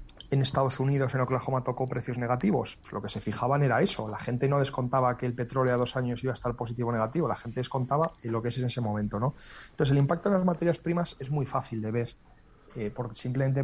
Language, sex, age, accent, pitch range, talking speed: Spanish, male, 30-49, Spanish, 120-140 Hz, 245 wpm